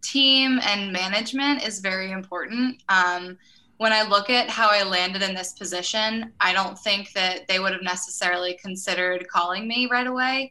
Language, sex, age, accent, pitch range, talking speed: English, female, 20-39, American, 180-220 Hz, 170 wpm